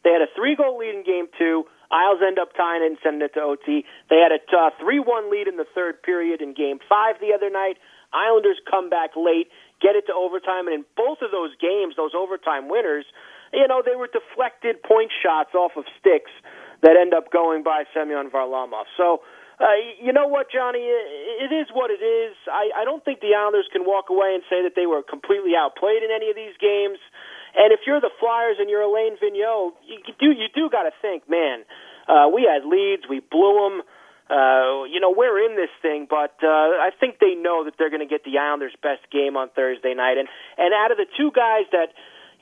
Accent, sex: American, male